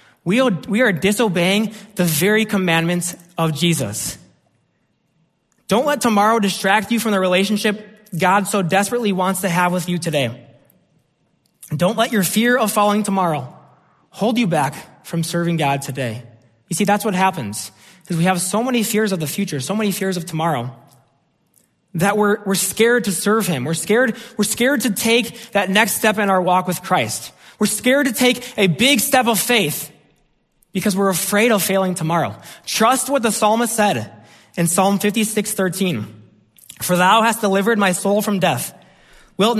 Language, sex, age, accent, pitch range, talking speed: English, male, 20-39, American, 155-210 Hz, 170 wpm